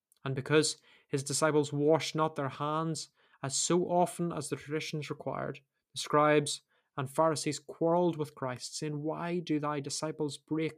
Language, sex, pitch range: English, male, 135-160 Hz